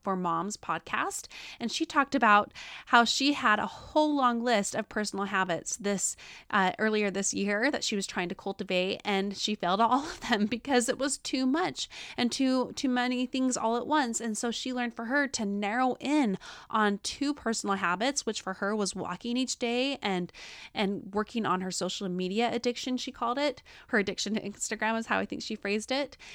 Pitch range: 200-255 Hz